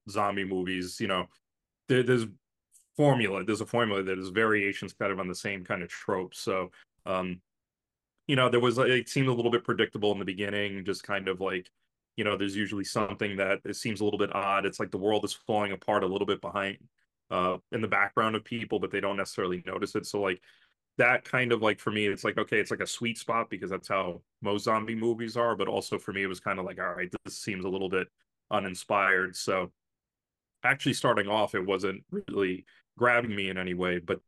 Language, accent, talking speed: English, American, 225 wpm